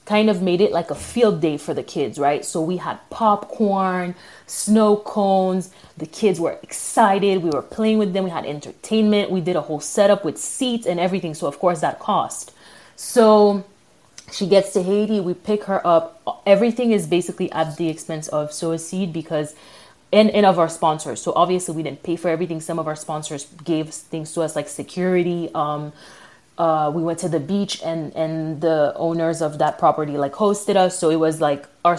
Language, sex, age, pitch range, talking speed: English, female, 20-39, 160-200 Hz, 205 wpm